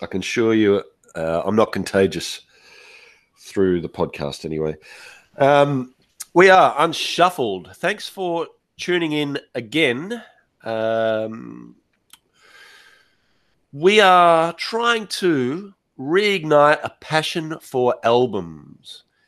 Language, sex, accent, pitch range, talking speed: English, male, Australian, 110-145 Hz, 95 wpm